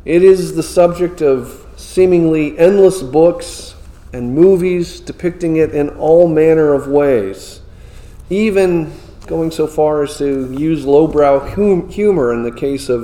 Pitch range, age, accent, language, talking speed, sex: 120-170 Hz, 40-59, American, English, 140 wpm, male